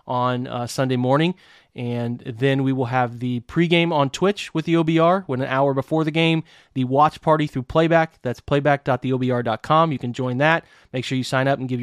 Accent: American